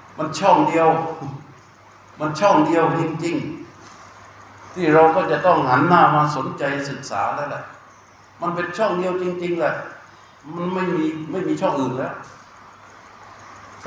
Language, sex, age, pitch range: Thai, male, 60-79, 140-175 Hz